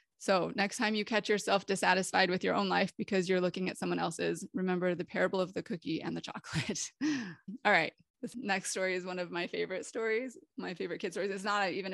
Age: 20-39